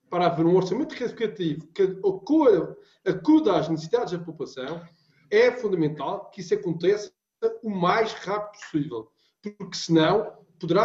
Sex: male